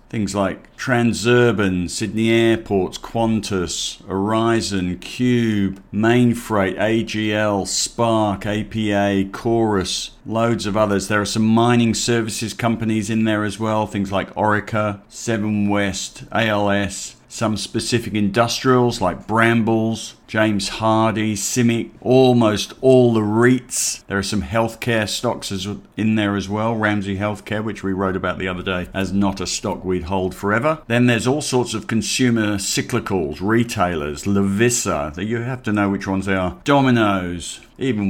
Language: English